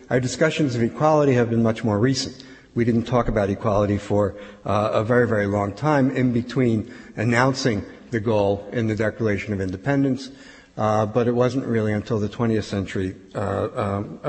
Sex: male